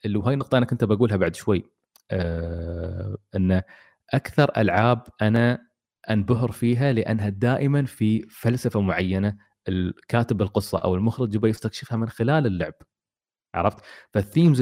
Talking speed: 125 wpm